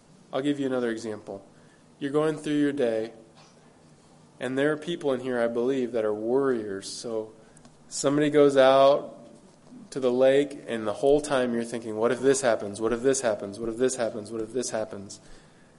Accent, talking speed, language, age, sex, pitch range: American, 190 wpm, English, 20-39, male, 115-140 Hz